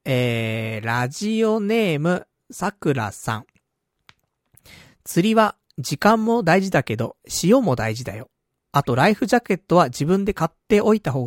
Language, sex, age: Japanese, male, 40-59